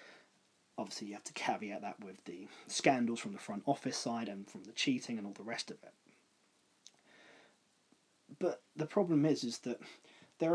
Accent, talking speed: British, 175 wpm